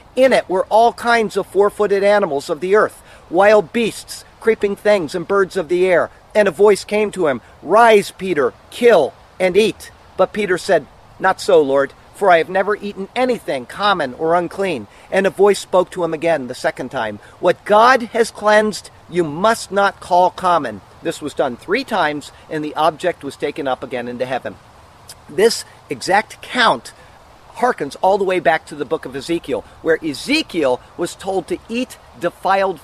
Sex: male